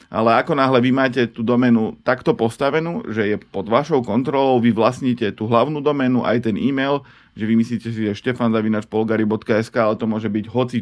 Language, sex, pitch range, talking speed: Slovak, male, 110-130 Hz, 190 wpm